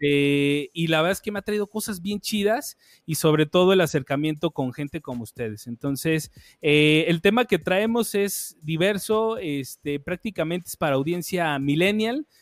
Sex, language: male, Spanish